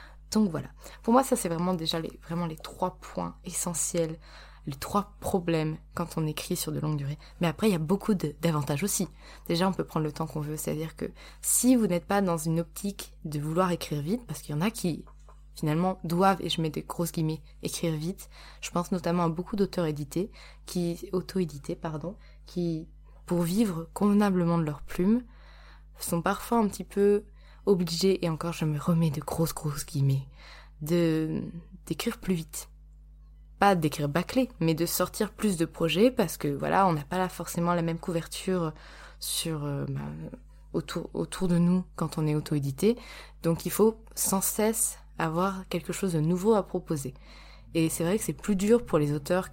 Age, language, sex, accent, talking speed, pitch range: 20-39, French, female, French, 190 wpm, 155-190 Hz